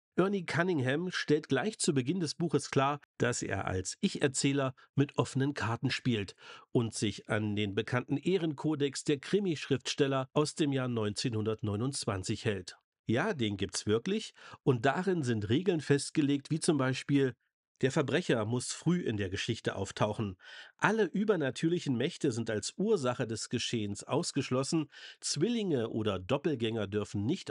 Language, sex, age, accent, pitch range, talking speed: German, male, 50-69, German, 110-155 Hz, 140 wpm